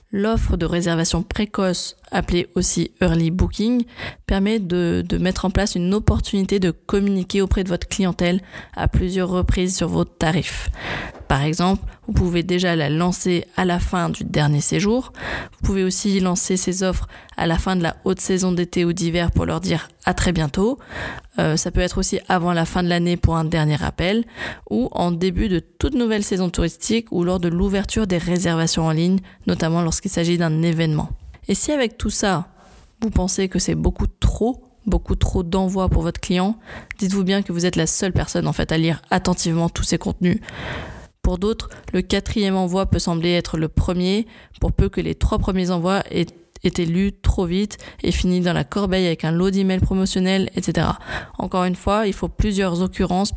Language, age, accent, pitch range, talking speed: French, 20-39, French, 170-195 Hz, 190 wpm